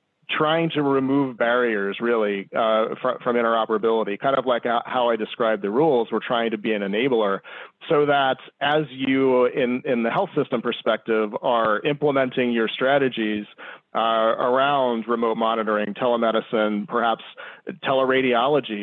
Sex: male